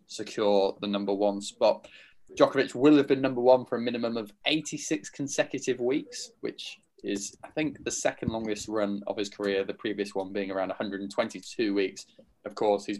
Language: English